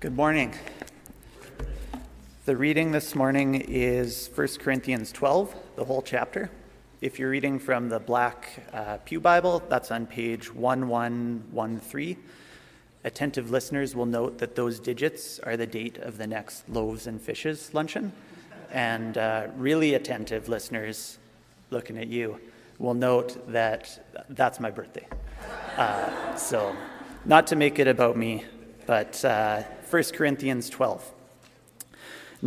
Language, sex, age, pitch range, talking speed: English, male, 30-49, 115-145 Hz, 130 wpm